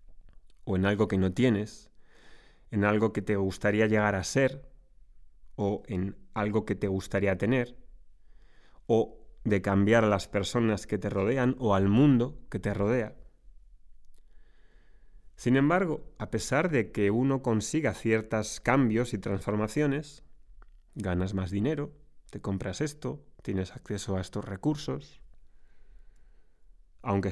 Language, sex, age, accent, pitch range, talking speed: Spanish, male, 30-49, Spanish, 95-125 Hz, 130 wpm